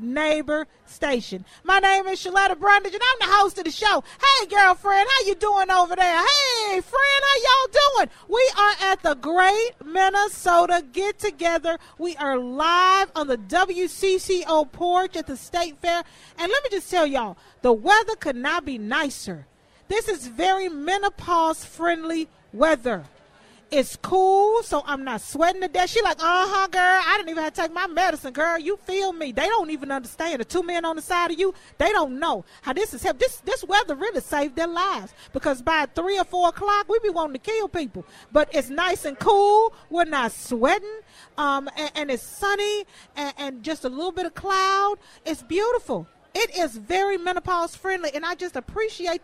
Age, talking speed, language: 40-59, 190 wpm, English